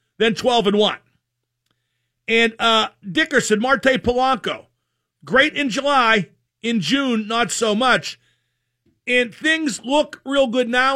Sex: male